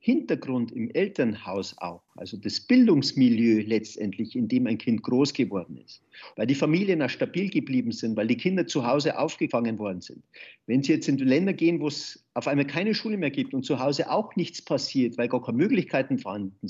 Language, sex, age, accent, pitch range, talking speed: German, male, 50-69, German, 130-170 Hz, 200 wpm